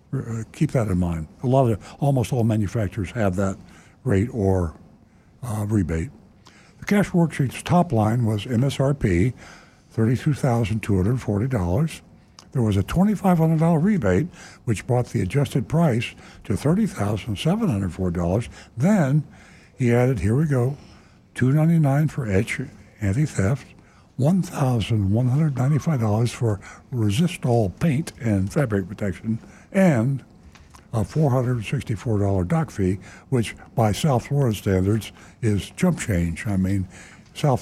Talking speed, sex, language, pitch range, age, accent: 110 wpm, male, English, 100-140 Hz, 60-79, American